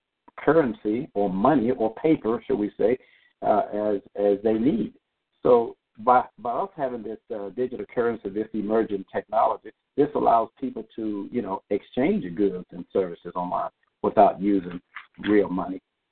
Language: English